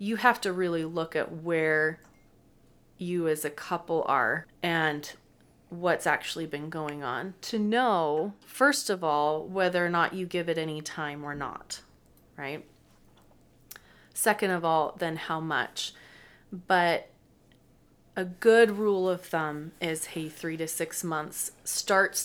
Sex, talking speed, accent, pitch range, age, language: female, 145 wpm, American, 155-185 Hz, 30-49, English